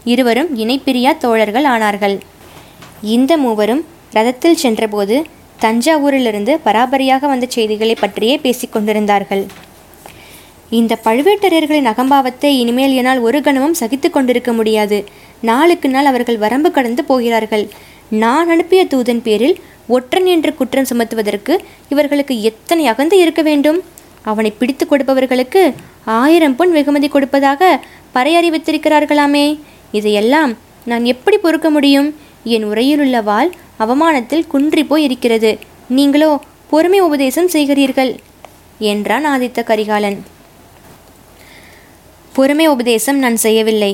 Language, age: Tamil, 20-39